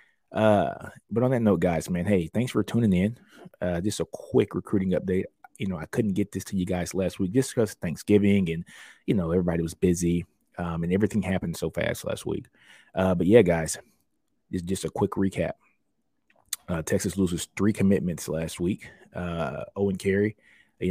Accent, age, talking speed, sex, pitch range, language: American, 20-39, 190 wpm, male, 85-100 Hz, English